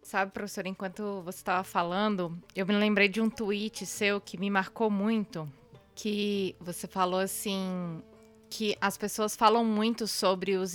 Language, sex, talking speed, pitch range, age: Portuguese, female, 155 wpm, 185-220 Hz, 20-39